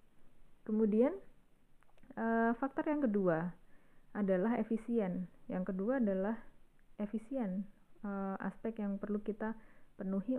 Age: 20-39